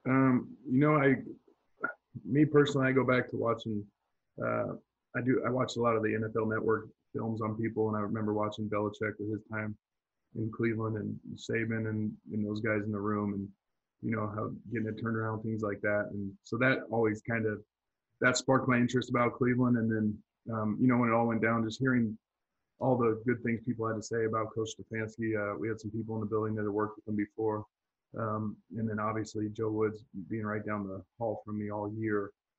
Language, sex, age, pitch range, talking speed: English, male, 20-39, 105-120 Hz, 215 wpm